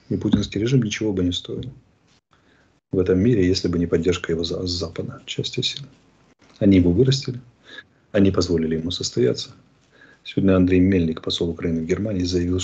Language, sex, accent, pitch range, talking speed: Russian, male, native, 85-110 Hz, 160 wpm